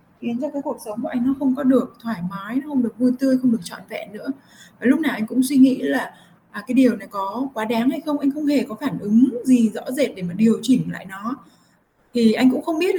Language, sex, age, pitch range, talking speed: Vietnamese, female, 20-39, 215-260 Hz, 270 wpm